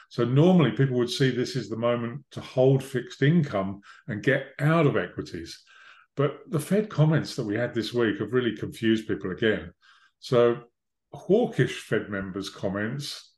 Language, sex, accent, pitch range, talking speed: English, male, British, 115-150 Hz, 165 wpm